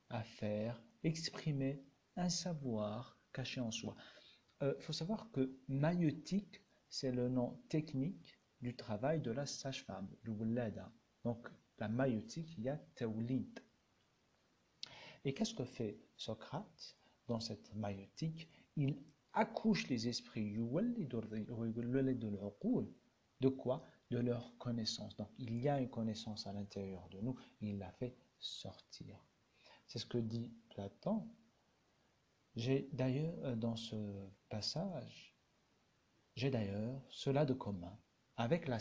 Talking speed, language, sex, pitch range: 125 wpm, Arabic, male, 110-145 Hz